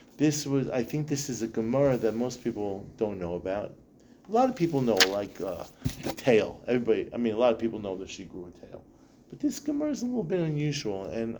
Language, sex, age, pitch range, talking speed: English, male, 40-59, 110-150 Hz, 235 wpm